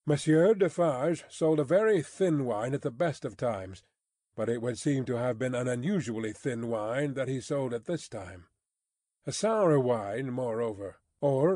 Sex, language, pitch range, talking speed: male, English, 130-165 Hz, 170 wpm